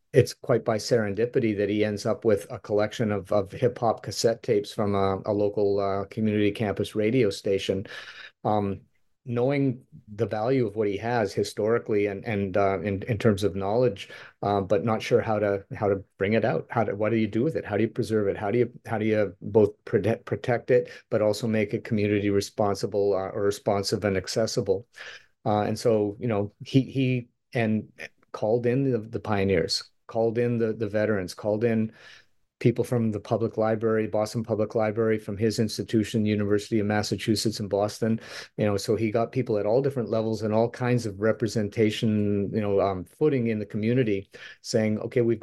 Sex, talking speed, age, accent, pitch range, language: male, 195 wpm, 40-59, American, 105-115 Hz, English